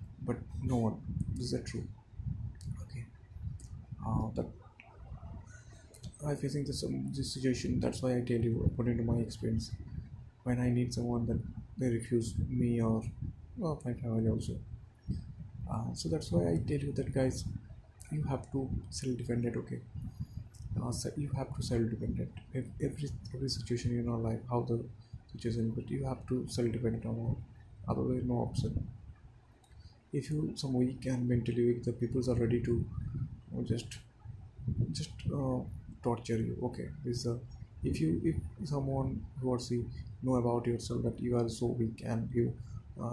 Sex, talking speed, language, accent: male, 160 wpm, English, Indian